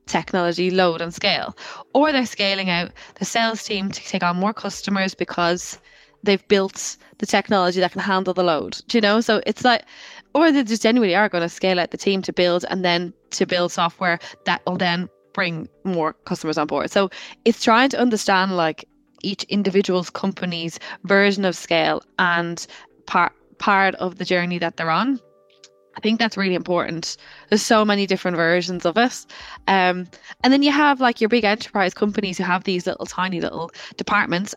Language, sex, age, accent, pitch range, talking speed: English, female, 20-39, Irish, 175-210 Hz, 185 wpm